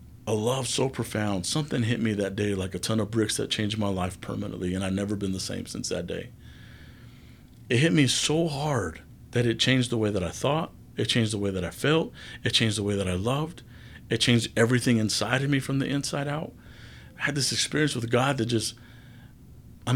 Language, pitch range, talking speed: English, 105-125 Hz, 220 wpm